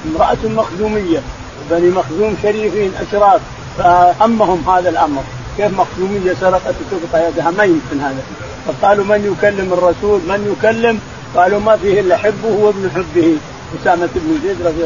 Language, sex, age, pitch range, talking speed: Arabic, male, 50-69, 180-220 Hz, 135 wpm